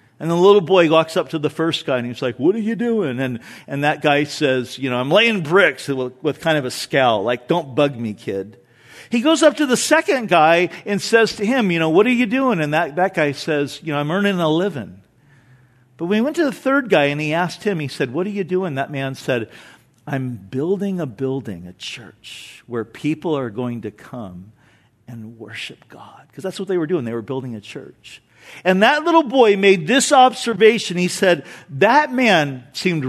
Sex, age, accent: male, 50-69, American